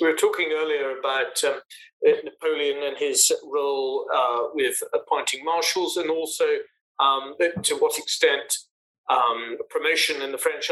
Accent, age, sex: British, 40-59, male